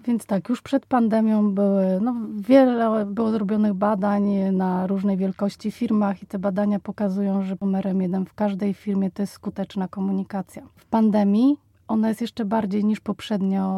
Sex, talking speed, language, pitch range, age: female, 160 wpm, Polish, 195-215 Hz, 30-49